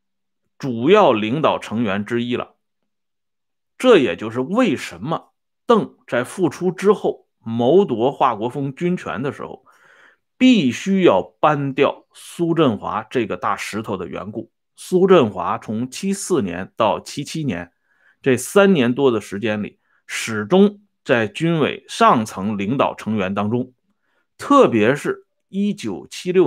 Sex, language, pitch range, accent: male, Swedish, 120-195 Hz, Chinese